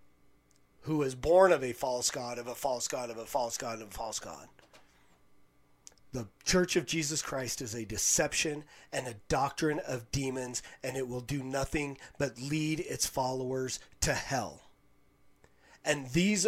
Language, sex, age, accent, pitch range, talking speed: English, male, 30-49, American, 120-150 Hz, 165 wpm